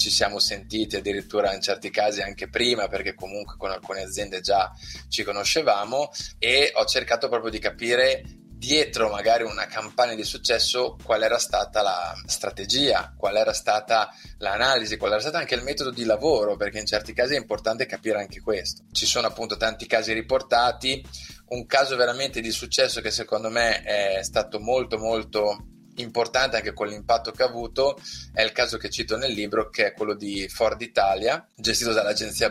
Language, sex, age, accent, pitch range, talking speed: Italian, male, 20-39, native, 105-125 Hz, 175 wpm